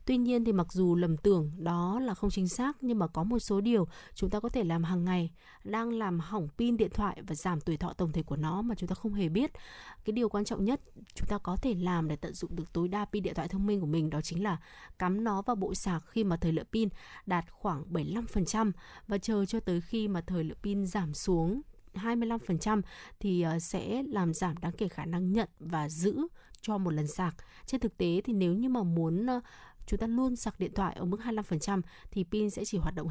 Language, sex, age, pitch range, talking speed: Vietnamese, female, 20-39, 170-215 Hz, 245 wpm